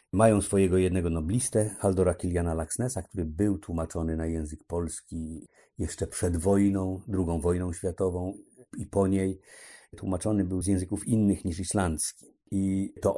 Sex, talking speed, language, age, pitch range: male, 140 wpm, Polish, 50-69, 80-95 Hz